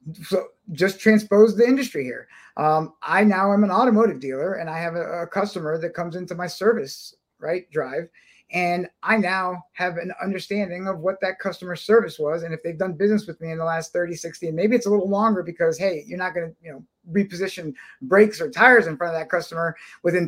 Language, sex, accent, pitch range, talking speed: English, male, American, 170-220 Hz, 220 wpm